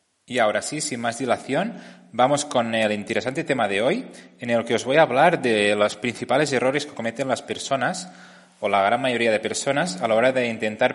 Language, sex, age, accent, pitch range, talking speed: Spanish, male, 30-49, Spanish, 110-140 Hz, 215 wpm